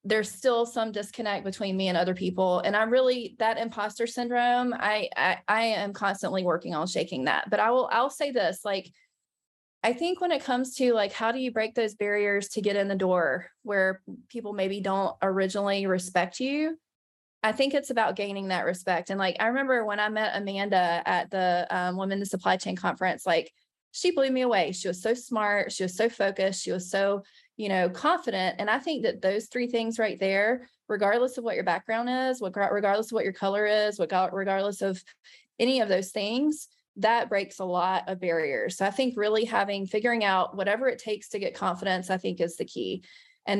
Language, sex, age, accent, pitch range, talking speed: English, female, 20-39, American, 190-235 Hz, 210 wpm